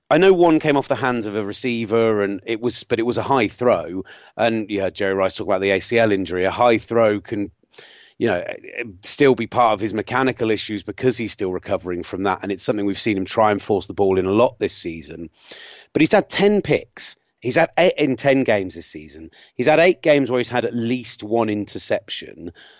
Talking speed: 230 wpm